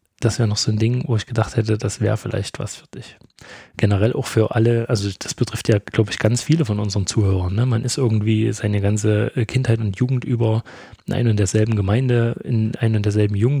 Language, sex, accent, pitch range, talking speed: German, male, German, 105-120 Hz, 220 wpm